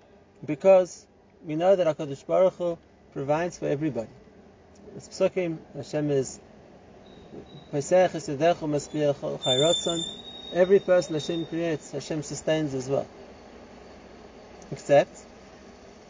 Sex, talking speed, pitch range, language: male, 75 wpm, 145-190 Hz, English